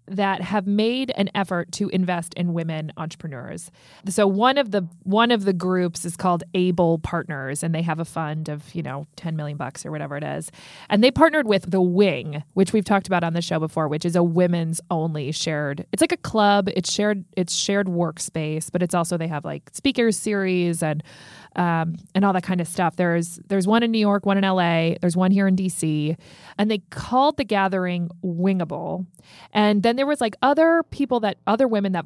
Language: English